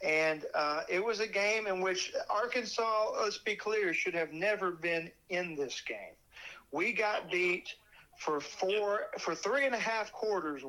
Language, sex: English, male